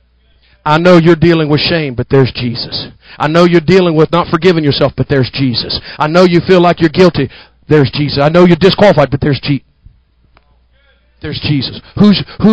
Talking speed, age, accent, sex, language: 190 wpm, 40-59, American, male, English